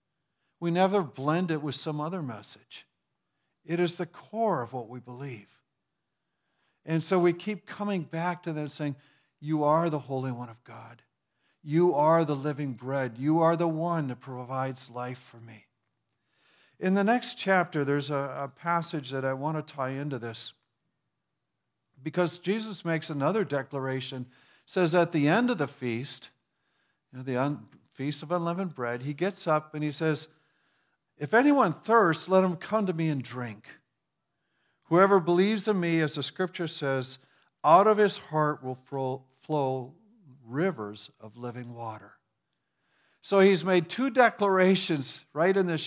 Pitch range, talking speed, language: 135-180 Hz, 155 wpm, English